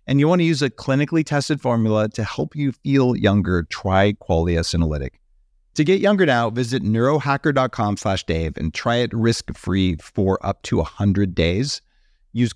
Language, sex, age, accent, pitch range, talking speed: English, male, 40-59, American, 95-135 Hz, 165 wpm